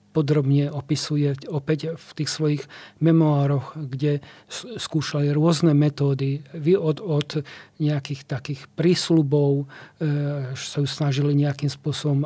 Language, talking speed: Slovak, 115 wpm